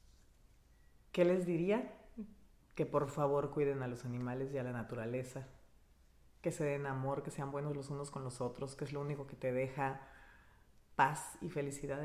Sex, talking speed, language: female, 180 wpm, Spanish